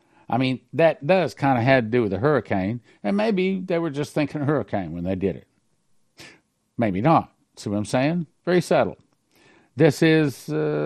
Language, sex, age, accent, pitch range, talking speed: English, male, 60-79, American, 110-165 Hz, 180 wpm